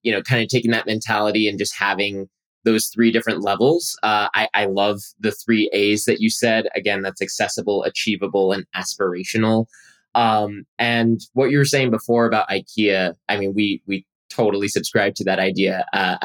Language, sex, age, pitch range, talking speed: English, male, 20-39, 100-115 Hz, 180 wpm